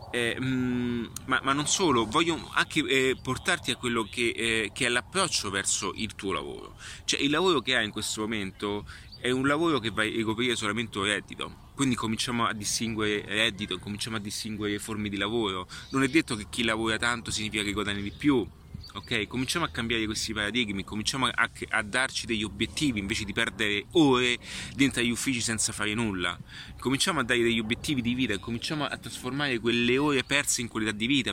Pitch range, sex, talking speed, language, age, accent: 105-125 Hz, male, 190 wpm, Italian, 30-49, native